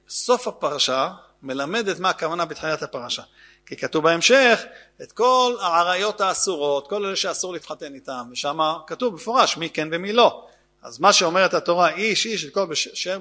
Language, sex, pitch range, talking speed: Hebrew, male, 165-215 Hz, 165 wpm